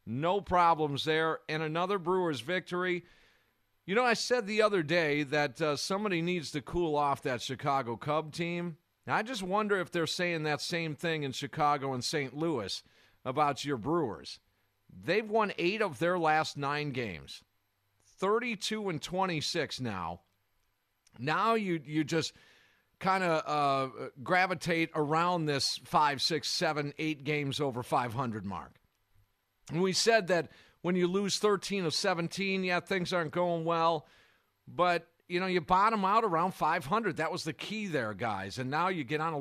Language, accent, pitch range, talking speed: English, American, 135-180 Hz, 165 wpm